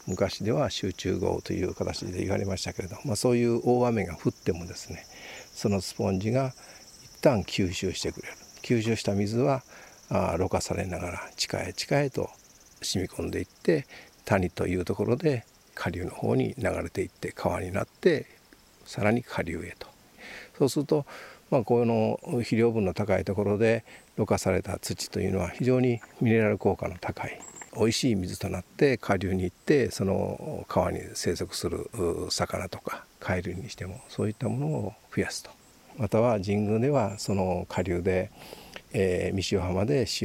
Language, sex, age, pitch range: Japanese, male, 50-69, 95-120 Hz